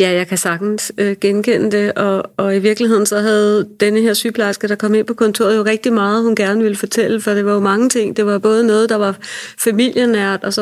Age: 30-49